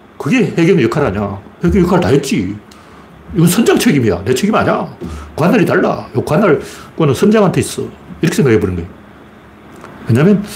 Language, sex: Korean, male